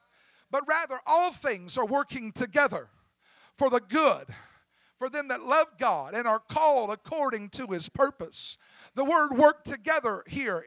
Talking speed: 150 wpm